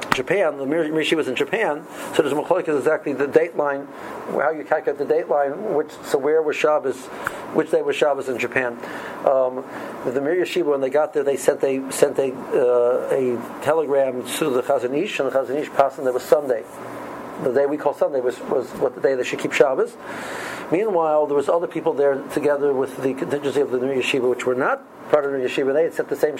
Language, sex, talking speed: English, male, 225 wpm